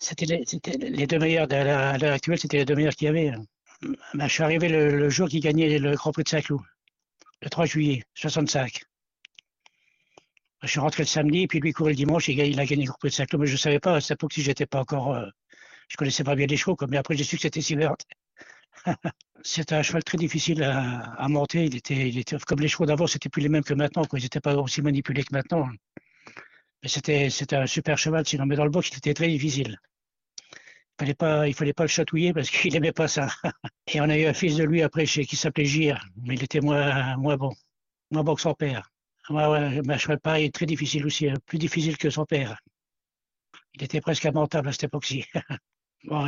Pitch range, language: 140-155 Hz, French